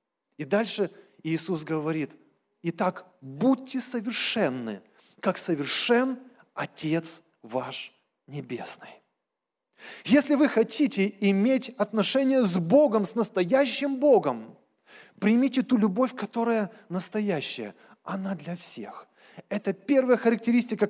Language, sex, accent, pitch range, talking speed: Russian, male, native, 170-230 Hz, 95 wpm